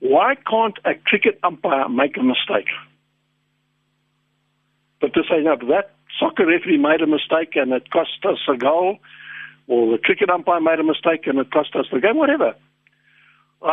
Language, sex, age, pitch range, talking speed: English, male, 60-79, 145-230 Hz, 165 wpm